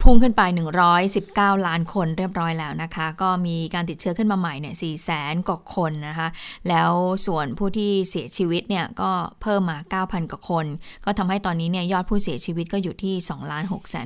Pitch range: 170-205 Hz